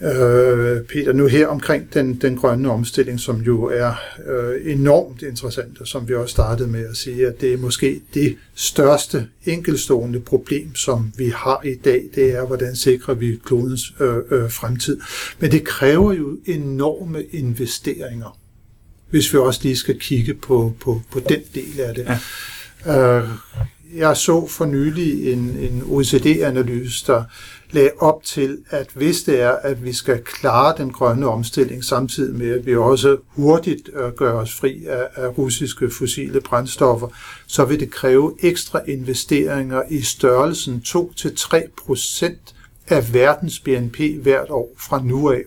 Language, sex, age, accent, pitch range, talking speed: Danish, male, 60-79, native, 120-145 Hz, 155 wpm